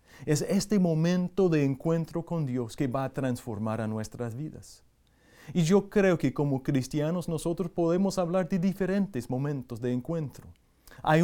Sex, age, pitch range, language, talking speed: male, 30-49, 125-165 Hz, English, 155 wpm